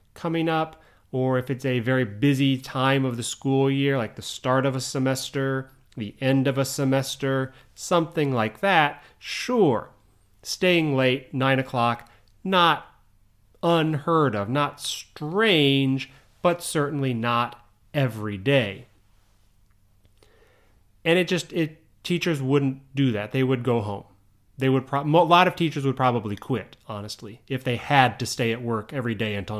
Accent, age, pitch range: American, 30-49, 105-150 Hz